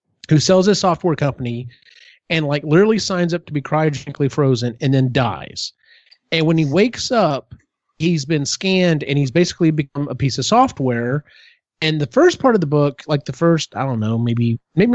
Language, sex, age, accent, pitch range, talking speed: English, male, 30-49, American, 130-170 Hz, 195 wpm